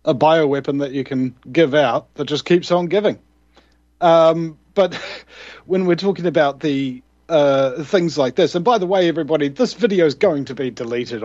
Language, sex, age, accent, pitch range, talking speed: English, male, 40-59, Australian, 130-175 Hz, 185 wpm